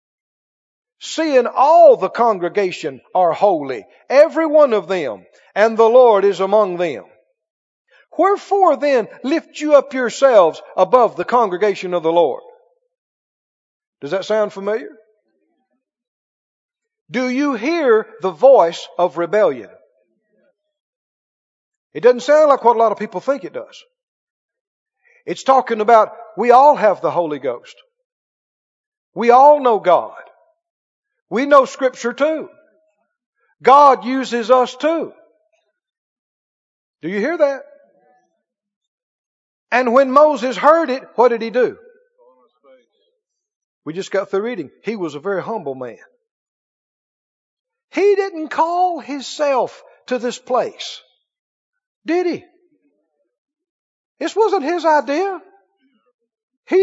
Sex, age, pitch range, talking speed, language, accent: male, 50-69, 230-355 Hz, 115 wpm, English, American